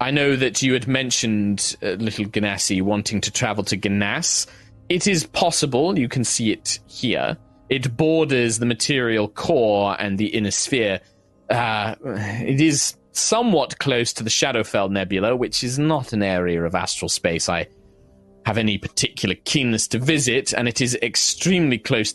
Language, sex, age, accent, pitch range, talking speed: English, male, 20-39, British, 95-125 Hz, 165 wpm